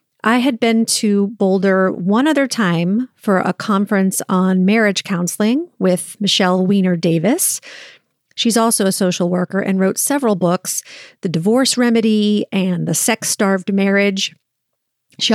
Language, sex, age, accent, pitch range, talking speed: English, female, 40-59, American, 185-240 Hz, 140 wpm